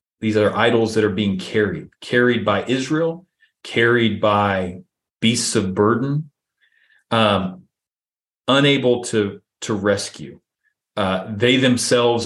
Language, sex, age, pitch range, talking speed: English, male, 40-59, 95-115 Hz, 115 wpm